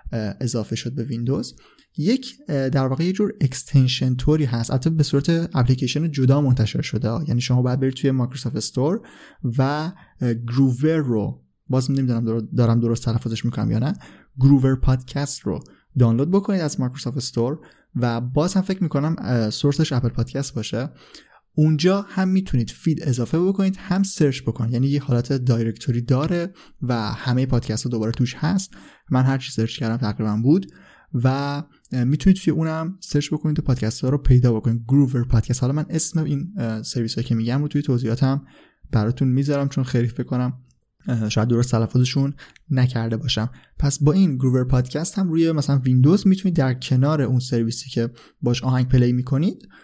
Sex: male